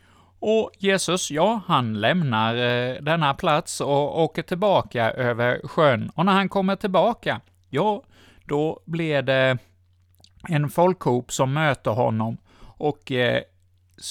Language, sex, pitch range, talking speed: Swedish, male, 110-155 Hz, 125 wpm